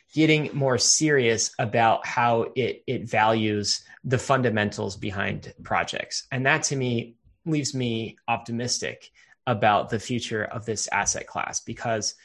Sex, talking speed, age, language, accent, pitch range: male, 130 wpm, 20-39, English, American, 110-140 Hz